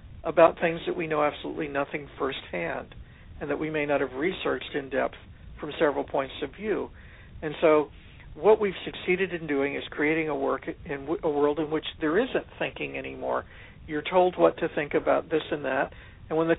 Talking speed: 195 wpm